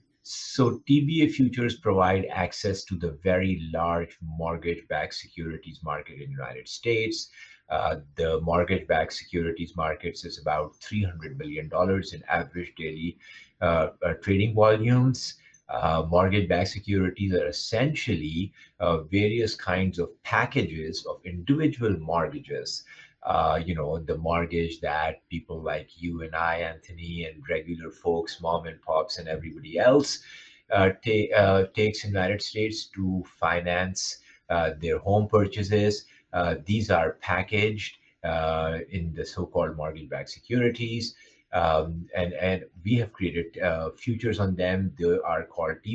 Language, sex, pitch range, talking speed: English, male, 85-105 Hz, 135 wpm